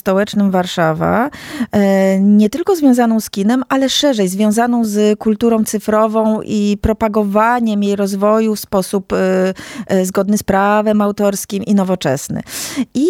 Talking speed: 120 wpm